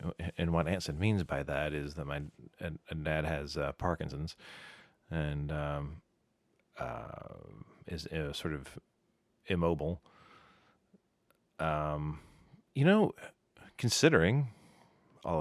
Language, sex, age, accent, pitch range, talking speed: English, male, 30-49, American, 75-95 Hz, 100 wpm